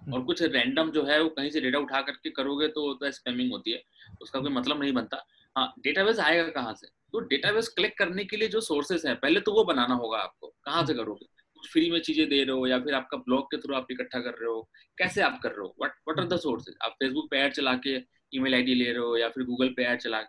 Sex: male